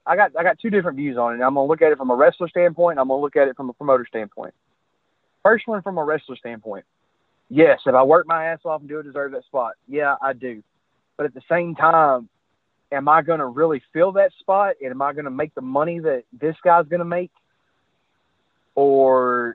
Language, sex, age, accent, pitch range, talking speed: English, male, 30-49, American, 135-170 Hz, 250 wpm